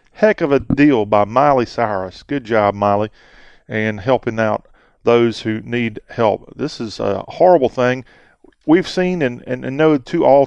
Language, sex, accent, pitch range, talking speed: English, male, American, 110-140 Hz, 170 wpm